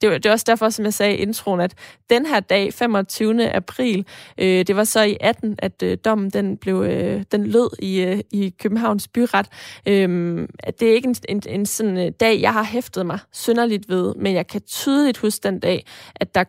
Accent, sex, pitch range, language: native, female, 190-225 Hz, Danish